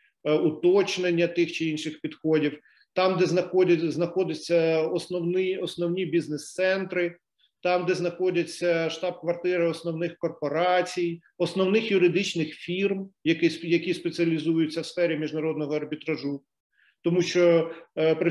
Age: 40-59